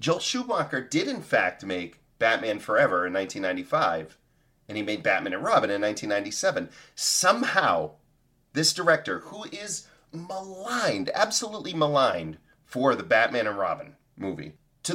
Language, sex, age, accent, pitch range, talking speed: English, male, 30-49, American, 130-190 Hz, 135 wpm